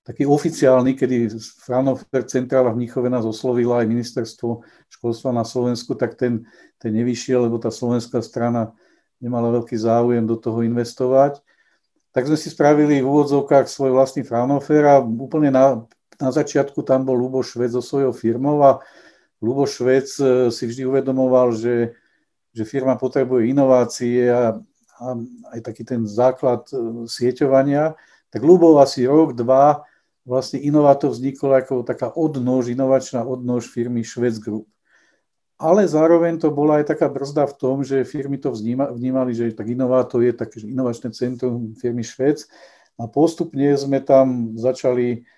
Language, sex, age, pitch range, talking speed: Czech, male, 50-69, 120-135 Hz, 140 wpm